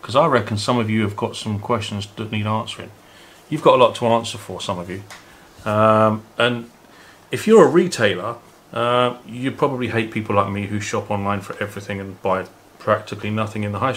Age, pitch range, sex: 30-49, 105-125 Hz, male